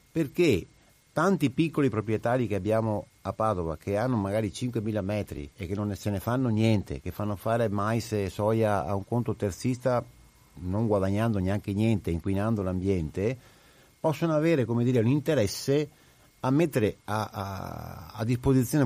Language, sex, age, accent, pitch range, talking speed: Italian, male, 50-69, native, 100-130 Hz, 145 wpm